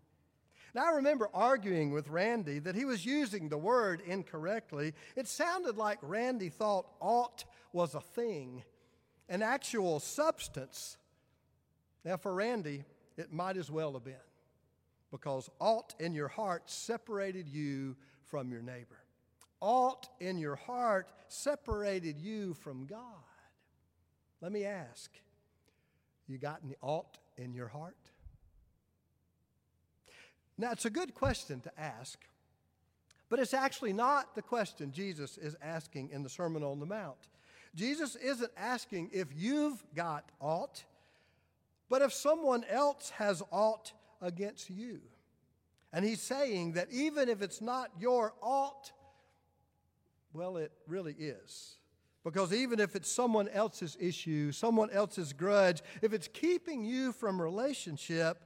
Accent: American